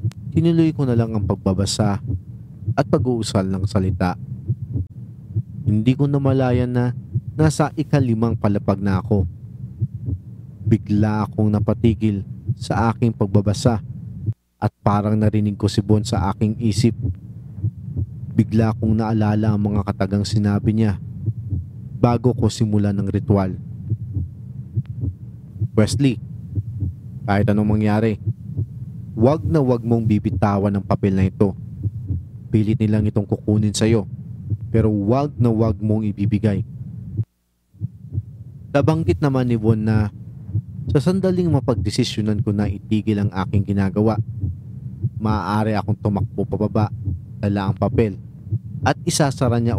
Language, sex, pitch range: English, male, 105-125 Hz